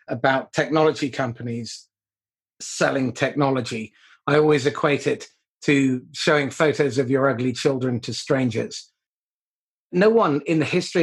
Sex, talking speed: male, 125 wpm